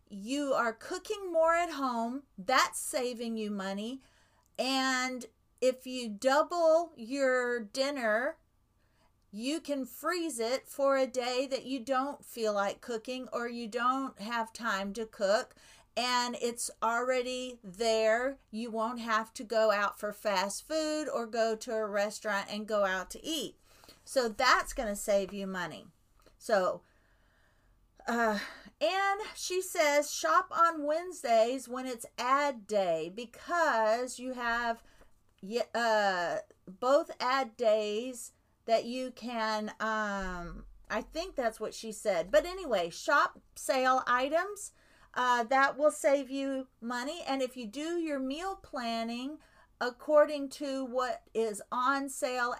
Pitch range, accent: 220-280 Hz, American